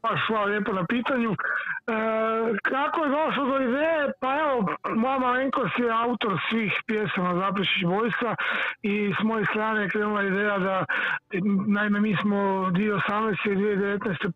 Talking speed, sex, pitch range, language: 145 wpm, male, 195-235 Hz, Croatian